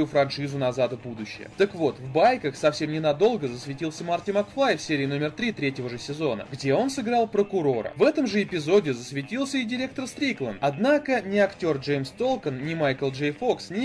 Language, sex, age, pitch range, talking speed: Russian, male, 20-39, 145-225 Hz, 180 wpm